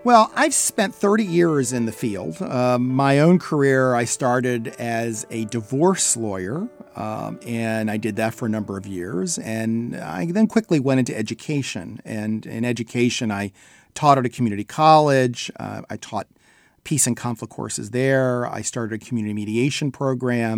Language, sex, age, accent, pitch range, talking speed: English, male, 40-59, American, 115-155 Hz, 170 wpm